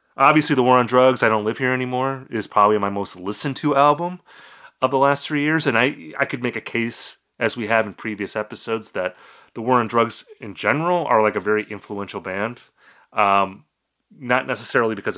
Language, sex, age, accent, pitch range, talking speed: English, male, 30-49, American, 105-135 Hz, 205 wpm